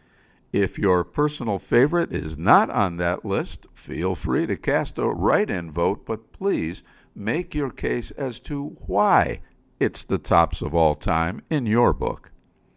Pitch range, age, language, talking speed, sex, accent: 85-120 Hz, 60-79, English, 155 wpm, male, American